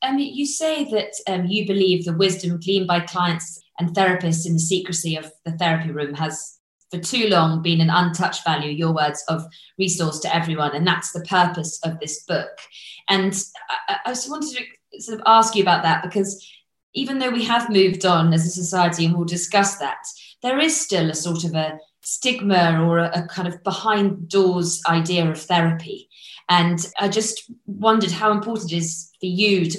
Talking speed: 195 wpm